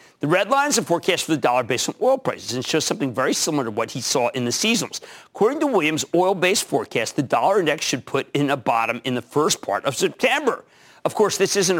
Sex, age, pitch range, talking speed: male, 40-59, 130-200 Hz, 245 wpm